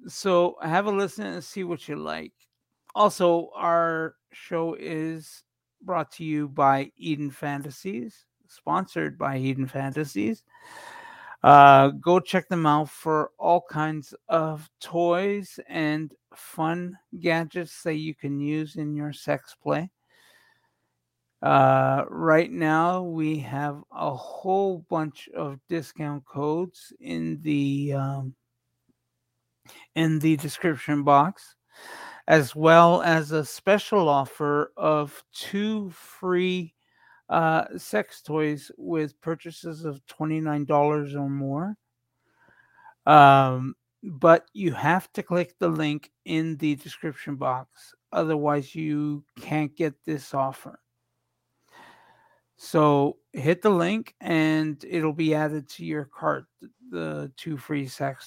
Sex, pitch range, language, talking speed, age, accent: male, 140-170 Hz, English, 115 wpm, 50-69, American